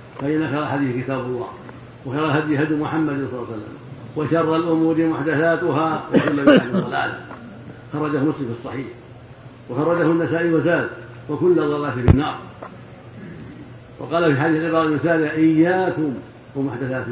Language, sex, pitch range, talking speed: Arabic, male, 120-160 Hz, 125 wpm